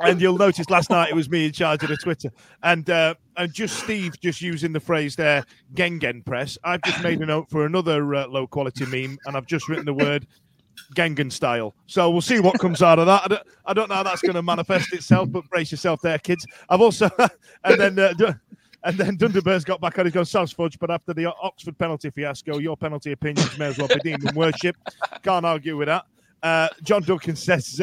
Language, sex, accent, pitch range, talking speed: English, male, British, 145-180 Hz, 225 wpm